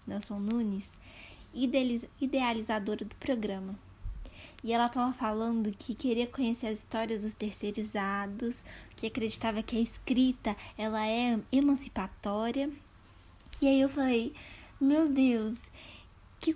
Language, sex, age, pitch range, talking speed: Portuguese, female, 10-29, 220-280 Hz, 110 wpm